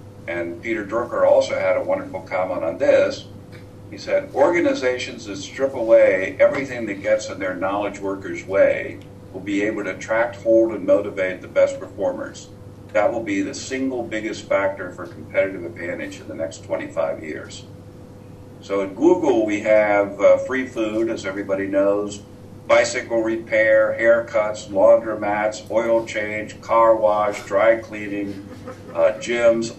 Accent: American